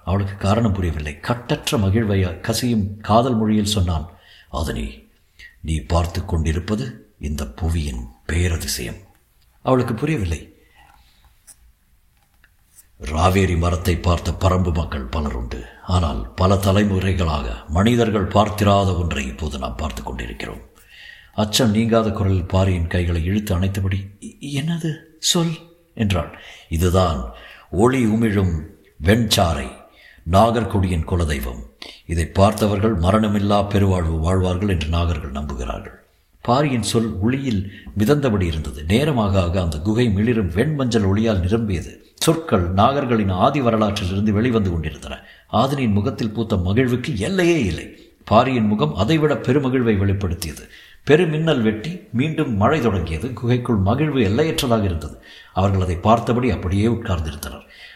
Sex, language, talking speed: male, Tamil, 105 wpm